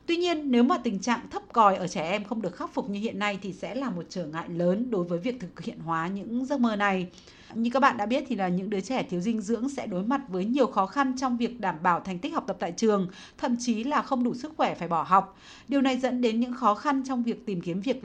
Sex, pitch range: female, 190-250 Hz